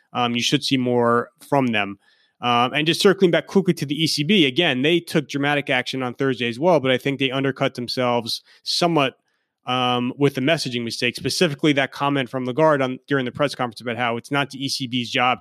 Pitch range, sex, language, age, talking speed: 120-140 Hz, male, English, 30-49, 210 wpm